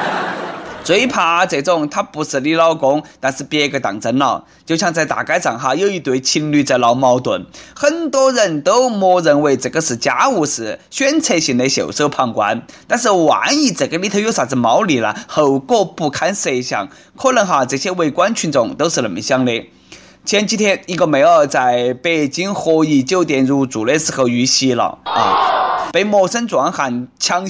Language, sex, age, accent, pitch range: Chinese, male, 20-39, native, 140-215 Hz